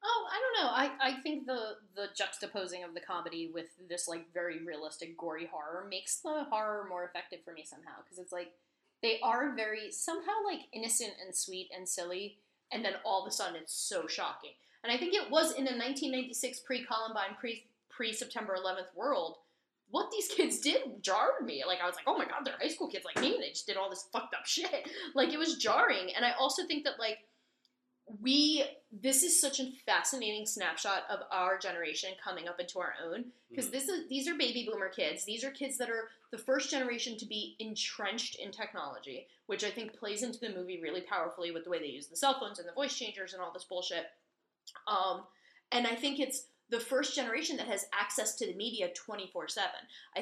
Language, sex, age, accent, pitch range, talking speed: English, female, 10-29, American, 185-265 Hz, 210 wpm